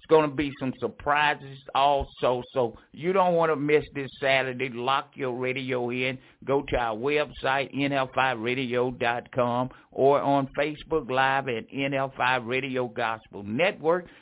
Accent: American